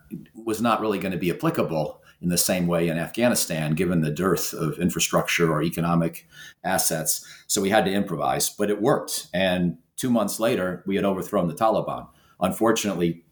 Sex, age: male, 50-69